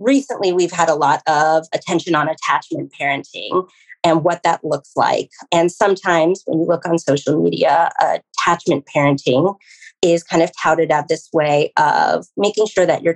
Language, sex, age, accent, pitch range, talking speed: English, female, 30-49, American, 160-225 Hz, 170 wpm